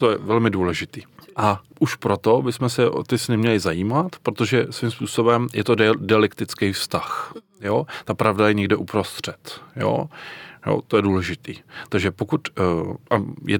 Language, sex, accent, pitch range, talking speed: Czech, male, native, 95-115 Hz, 155 wpm